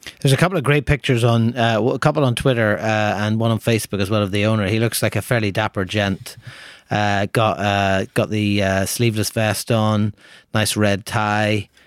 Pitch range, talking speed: 100-120 Hz, 205 wpm